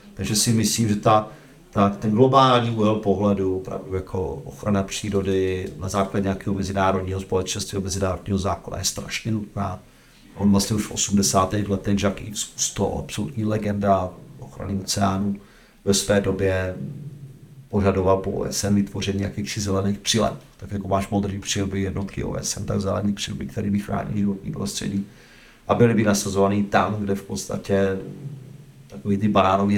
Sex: male